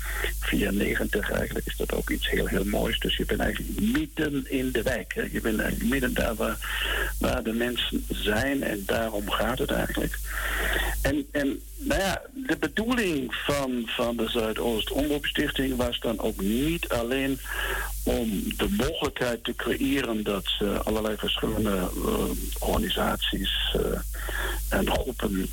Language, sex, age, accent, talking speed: Dutch, male, 60-79, Dutch, 150 wpm